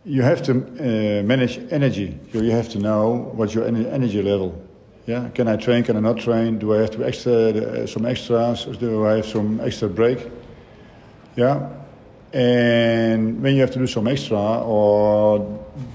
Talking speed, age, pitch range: 175 wpm, 50-69, 105-120 Hz